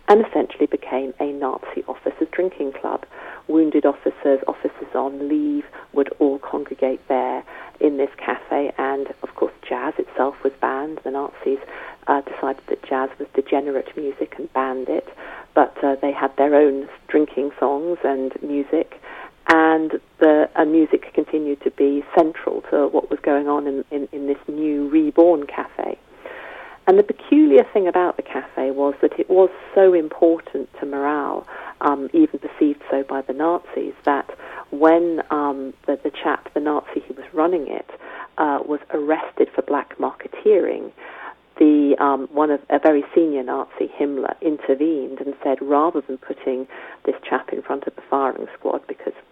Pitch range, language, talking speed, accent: 140-175 Hz, English, 160 wpm, British